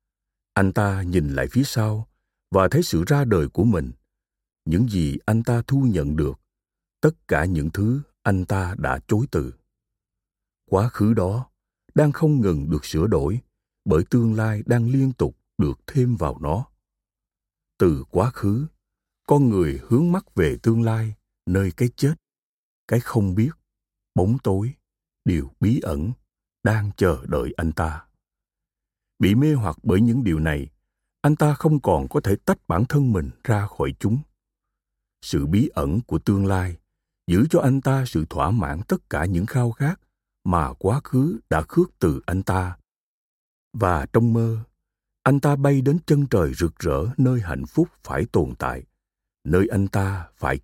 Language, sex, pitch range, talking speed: Vietnamese, male, 90-125 Hz, 165 wpm